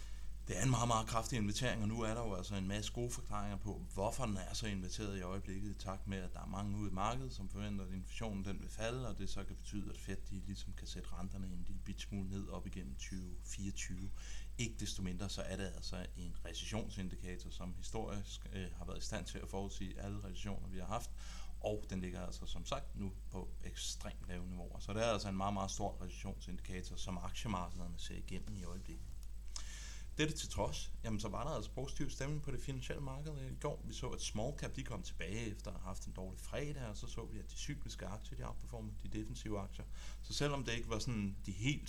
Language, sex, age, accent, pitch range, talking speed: Danish, male, 30-49, native, 95-110 Hz, 235 wpm